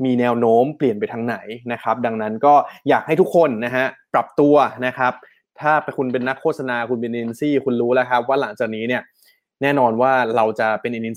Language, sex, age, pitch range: Thai, male, 20-39, 120-145 Hz